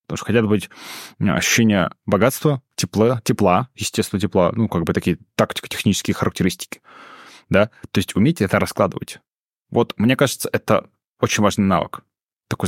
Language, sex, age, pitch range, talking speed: Russian, male, 20-39, 100-115 Hz, 145 wpm